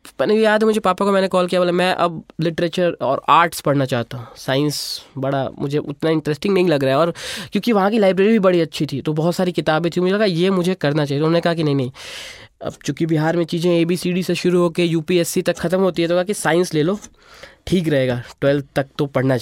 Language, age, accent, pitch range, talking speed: Hindi, 20-39, native, 145-195 Hz, 245 wpm